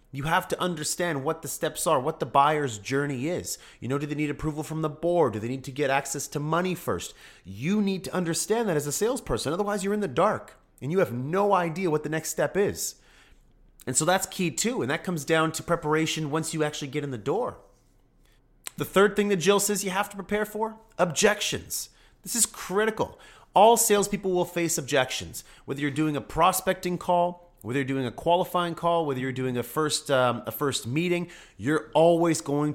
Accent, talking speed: American, 215 wpm